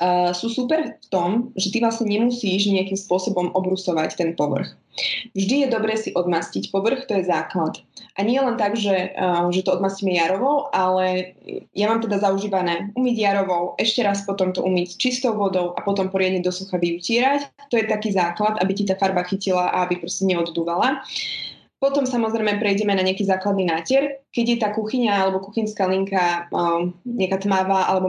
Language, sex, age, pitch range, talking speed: Slovak, female, 20-39, 180-220 Hz, 180 wpm